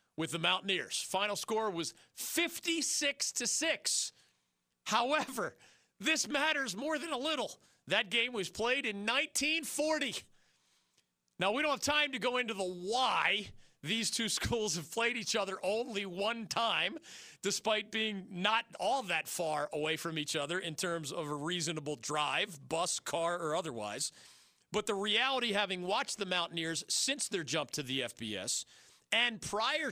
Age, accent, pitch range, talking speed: 40-59, American, 155-230 Hz, 150 wpm